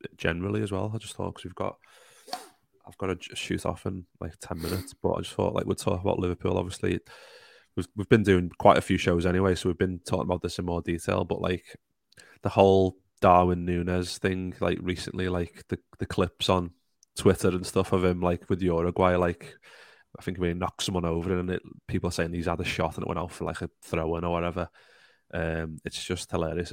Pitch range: 85-95 Hz